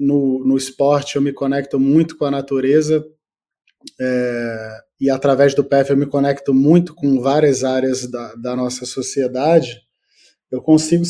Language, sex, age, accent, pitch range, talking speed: Portuguese, male, 20-39, Brazilian, 130-165 Hz, 150 wpm